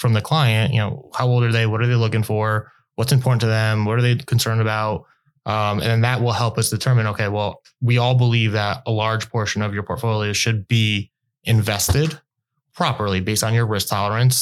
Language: English